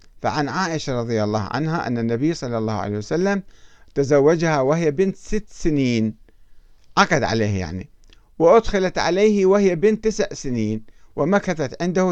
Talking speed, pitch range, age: 135 wpm, 110-160 Hz, 50-69